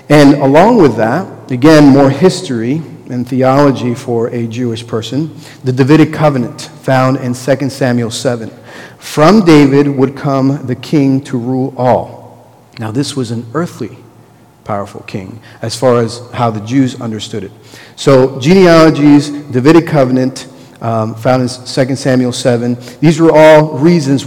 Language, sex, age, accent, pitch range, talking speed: English, male, 40-59, American, 120-145 Hz, 145 wpm